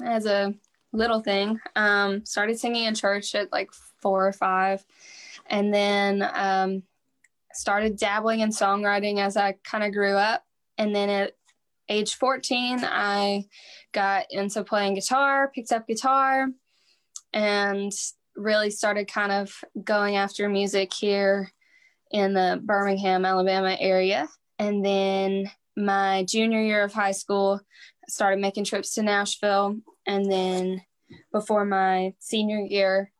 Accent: American